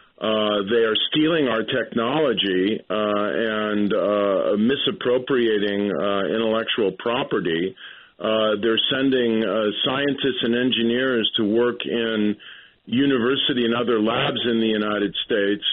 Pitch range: 110-130 Hz